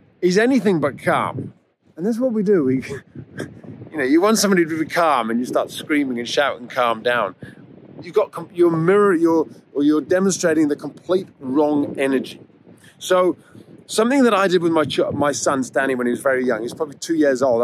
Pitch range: 150-200 Hz